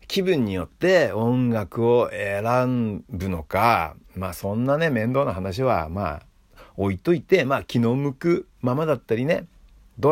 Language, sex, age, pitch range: Japanese, male, 50-69, 95-140 Hz